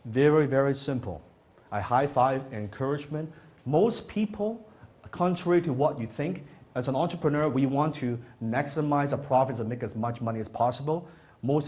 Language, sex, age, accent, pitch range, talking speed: English, male, 30-49, Chinese, 115-155 Hz, 160 wpm